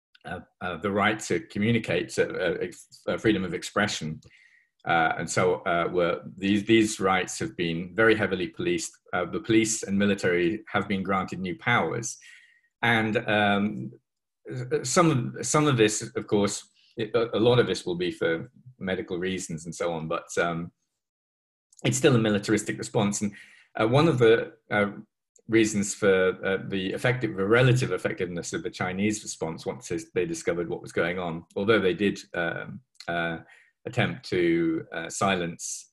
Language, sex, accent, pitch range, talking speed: English, male, British, 85-115 Hz, 165 wpm